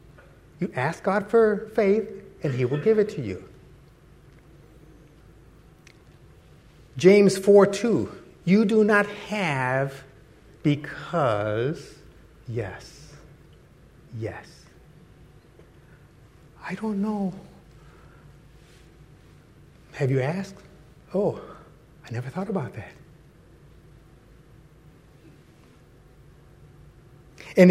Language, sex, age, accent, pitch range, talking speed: English, male, 60-79, American, 140-195 Hz, 75 wpm